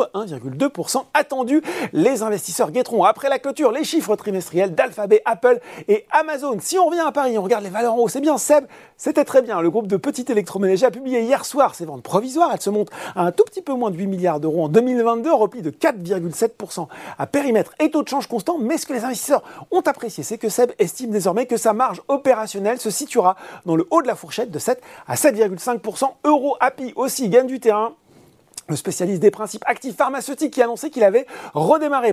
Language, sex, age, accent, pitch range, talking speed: French, male, 40-59, French, 195-280 Hz, 215 wpm